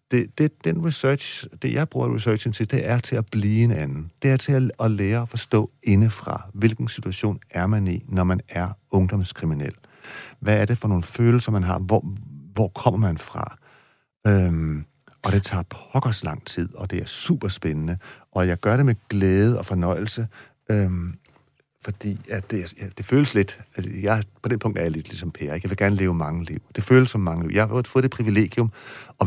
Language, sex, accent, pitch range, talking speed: Danish, male, native, 90-115 Hz, 210 wpm